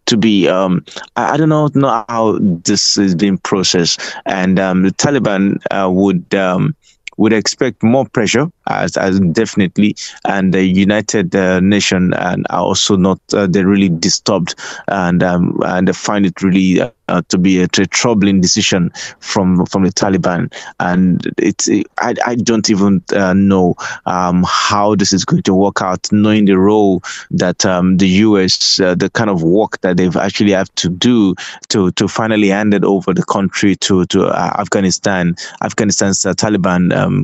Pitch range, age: 90-105 Hz, 20-39